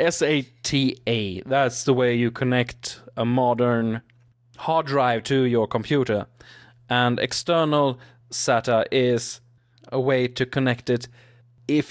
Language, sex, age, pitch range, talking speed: English, male, 20-39, 120-135 Hz, 115 wpm